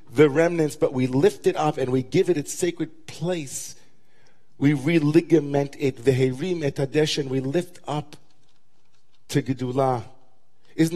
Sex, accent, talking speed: male, American, 150 wpm